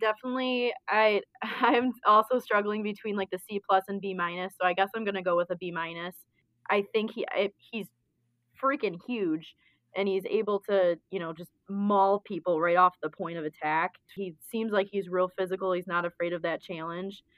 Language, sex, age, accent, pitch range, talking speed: English, female, 20-39, American, 175-205 Hz, 195 wpm